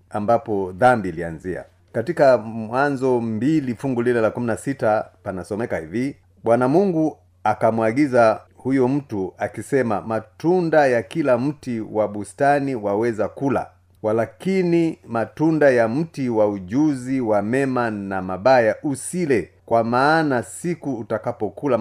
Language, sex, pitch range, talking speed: Swahili, male, 105-140 Hz, 115 wpm